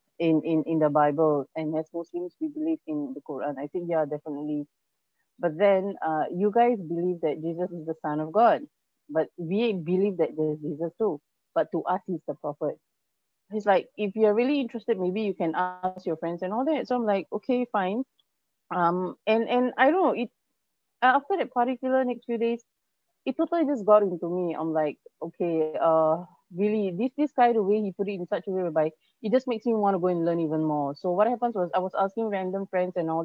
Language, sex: English, female